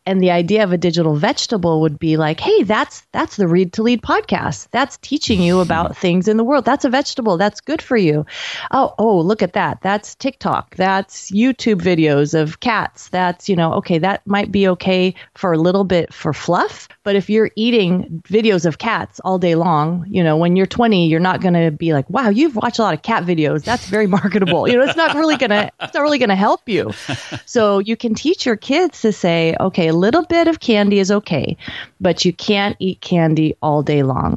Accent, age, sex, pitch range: American, 30-49, female, 165-220 Hz